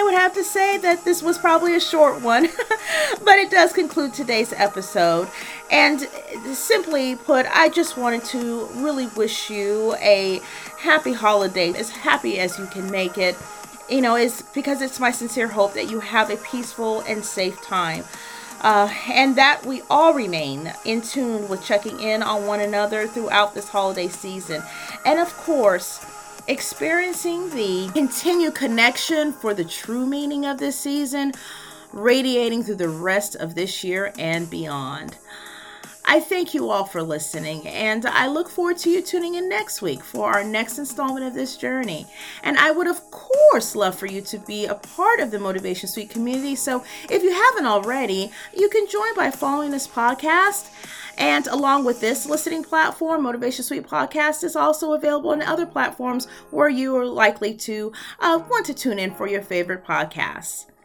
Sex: female